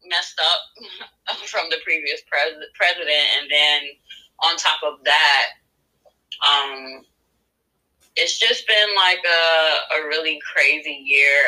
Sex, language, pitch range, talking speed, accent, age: female, English, 145-210 Hz, 115 wpm, American, 20-39